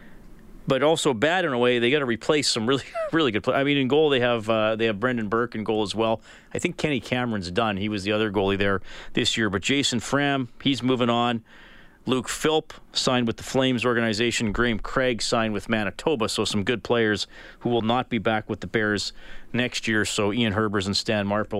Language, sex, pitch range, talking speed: English, male, 110-130 Hz, 225 wpm